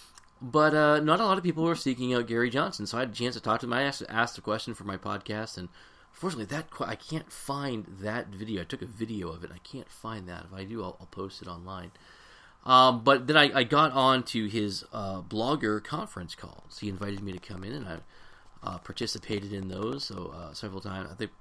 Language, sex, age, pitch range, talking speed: English, male, 30-49, 95-120 Hz, 245 wpm